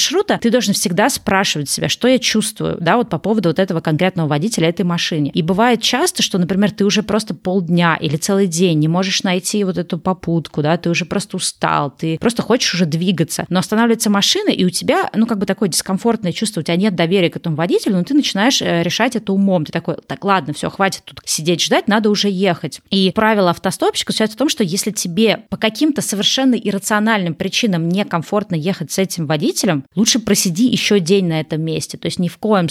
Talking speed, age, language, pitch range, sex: 210 wpm, 20-39, Russian, 175-215 Hz, female